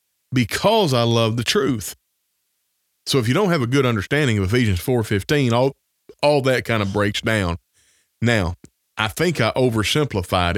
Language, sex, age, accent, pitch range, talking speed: English, male, 30-49, American, 105-125 Hz, 160 wpm